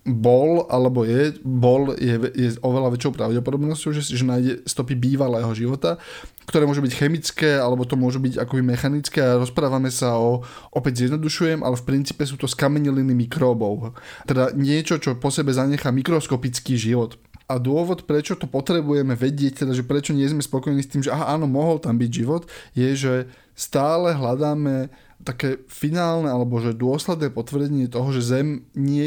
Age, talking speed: 20-39, 165 wpm